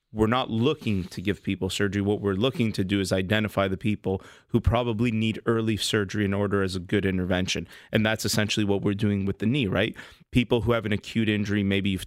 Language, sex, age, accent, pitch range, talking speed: English, male, 30-49, American, 100-110 Hz, 225 wpm